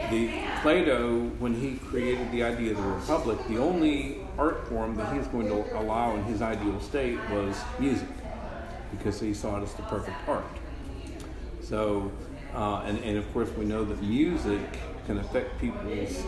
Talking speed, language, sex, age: 165 wpm, English, male, 50-69